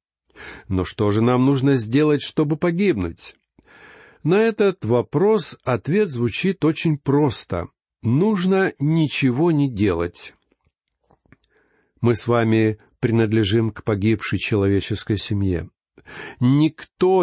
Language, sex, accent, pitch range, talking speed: Russian, male, native, 110-155 Hz, 100 wpm